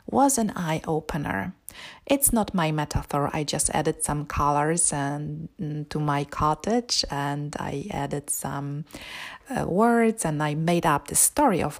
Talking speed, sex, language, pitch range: 145 wpm, female, English, 155-230 Hz